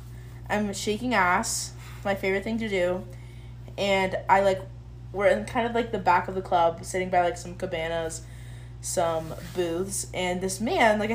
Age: 20-39